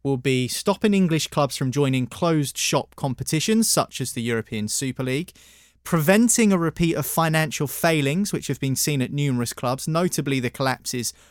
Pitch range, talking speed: 125-150 Hz, 170 wpm